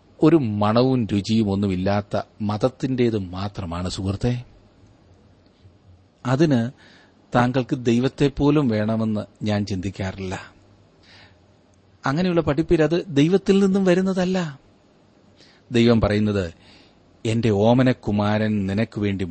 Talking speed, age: 75 wpm, 40-59